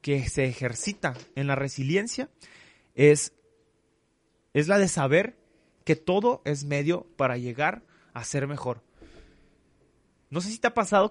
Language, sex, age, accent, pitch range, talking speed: Spanish, male, 30-49, Mexican, 130-175 Hz, 140 wpm